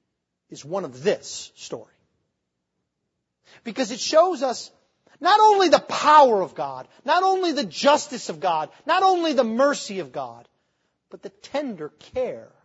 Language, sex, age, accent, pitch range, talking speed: English, male, 40-59, American, 200-320 Hz, 145 wpm